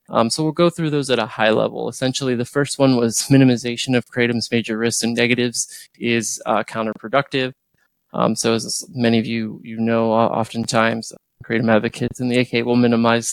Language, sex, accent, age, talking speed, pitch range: English, male, American, 20-39, 190 wpm, 115-130 Hz